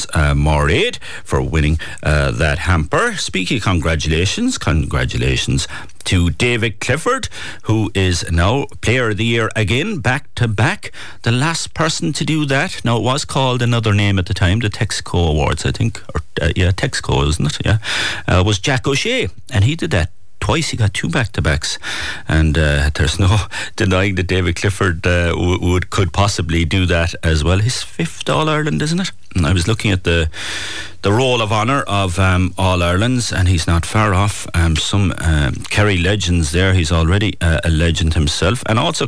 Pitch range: 80-105 Hz